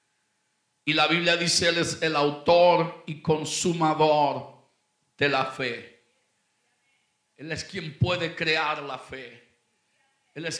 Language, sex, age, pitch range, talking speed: Spanish, male, 50-69, 150-190 Hz, 125 wpm